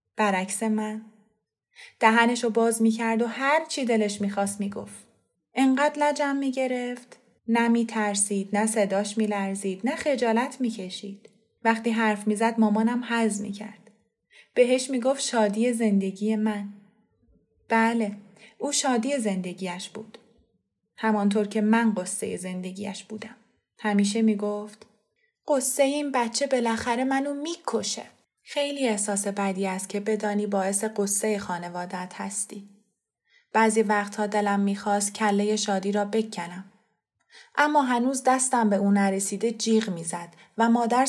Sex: female